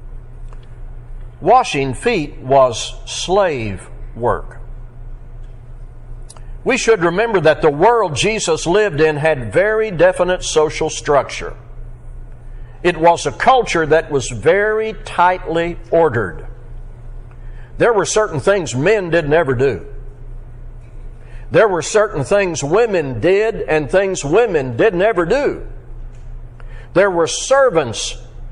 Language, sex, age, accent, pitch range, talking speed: English, male, 60-79, American, 120-190 Hz, 105 wpm